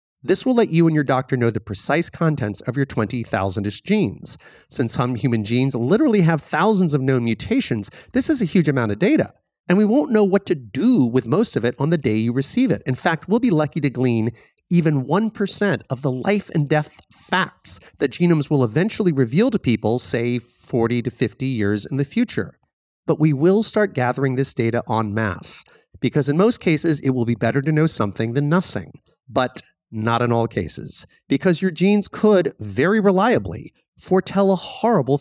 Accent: American